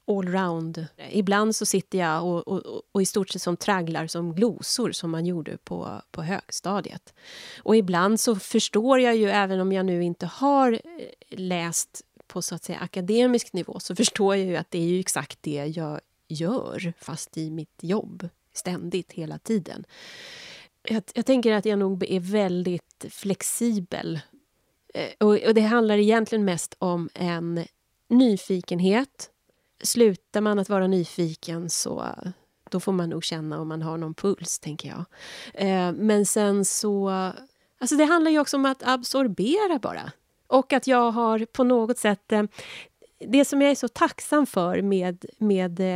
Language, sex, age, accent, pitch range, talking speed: Swedish, female, 30-49, native, 175-225 Hz, 160 wpm